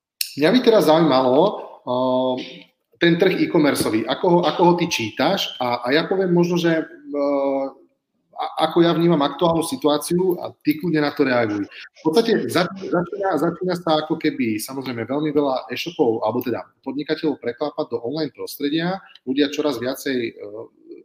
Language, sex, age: Slovak, male, 30-49